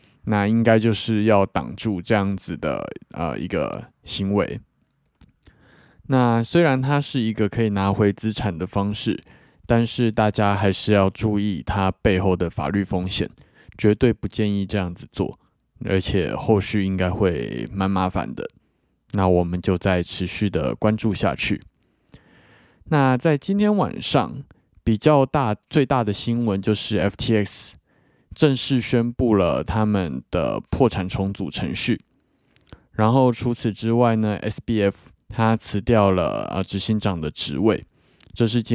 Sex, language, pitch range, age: male, Chinese, 95-115 Hz, 20-39